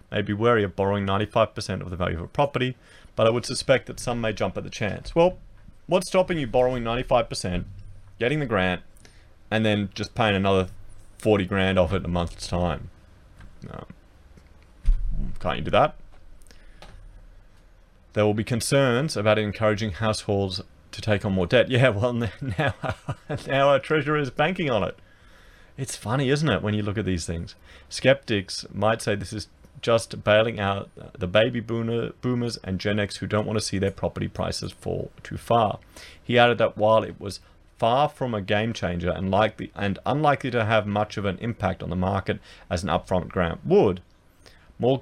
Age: 30-49